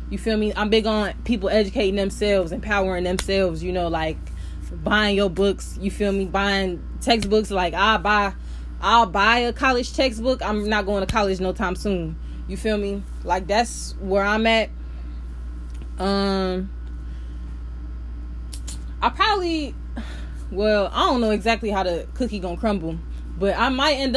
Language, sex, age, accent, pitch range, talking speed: English, female, 10-29, American, 175-215 Hz, 155 wpm